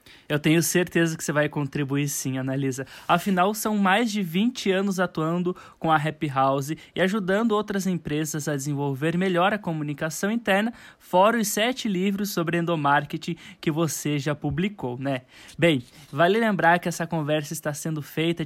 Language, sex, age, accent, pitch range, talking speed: Portuguese, male, 10-29, Brazilian, 150-200 Hz, 165 wpm